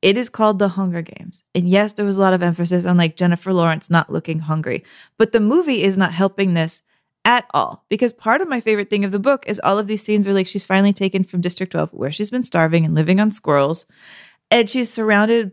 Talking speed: 245 wpm